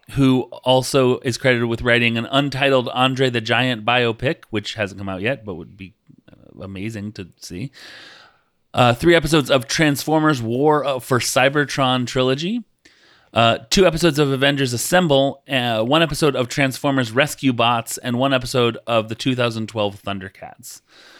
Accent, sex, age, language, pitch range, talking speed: American, male, 30-49, English, 115-145 Hz, 145 wpm